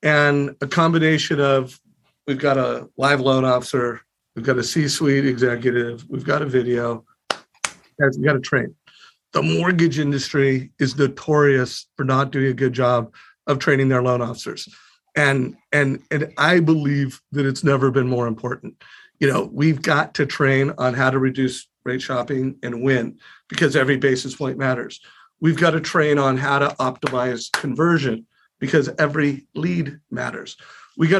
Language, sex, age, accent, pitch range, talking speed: English, male, 50-69, American, 130-155 Hz, 165 wpm